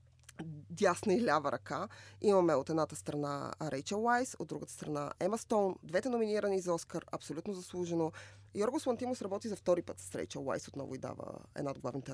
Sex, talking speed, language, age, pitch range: female, 180 wpm, Bulgarian, 20-39, 155-200 Hz